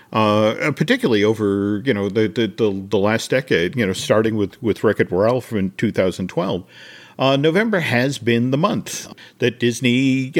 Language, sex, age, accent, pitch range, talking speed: English, male, 50-69, American, 105-135 Hz, 165 wpm